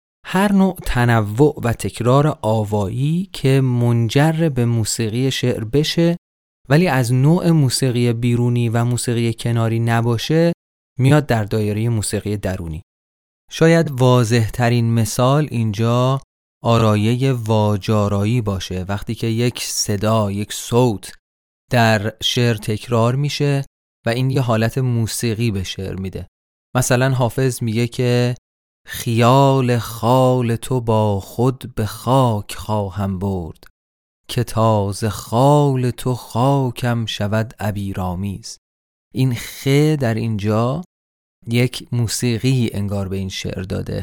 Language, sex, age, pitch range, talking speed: Persian, male, 30-49, 105-130 Hz, 115 wpm